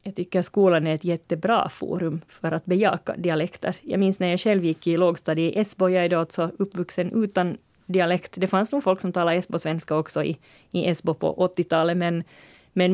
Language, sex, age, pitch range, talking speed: Swedish, female, 30-49, 165-195 Hz, 195 wpm